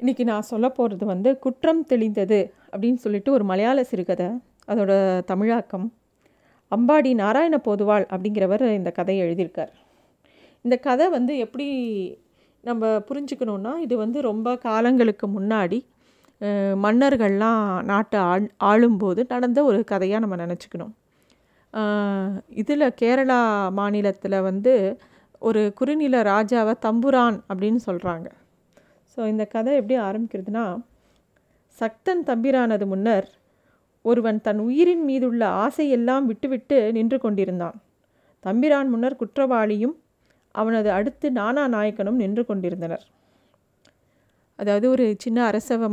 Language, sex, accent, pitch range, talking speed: Tamil, female, native, 200-250 Hz, 100 wpm